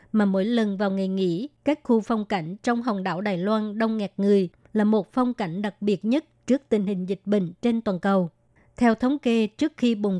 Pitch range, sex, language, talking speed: 200-235 Hz, male, Vietnamese, 230 wpm